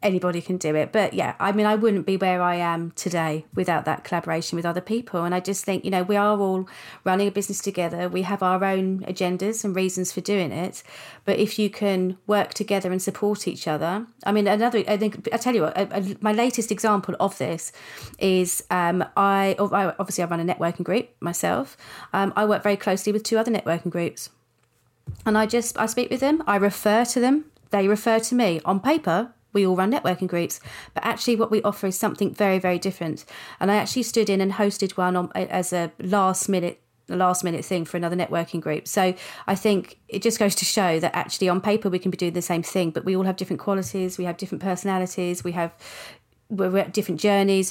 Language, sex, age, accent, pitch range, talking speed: English, female, 30-49, British, 175-205 Hz, 225 wpm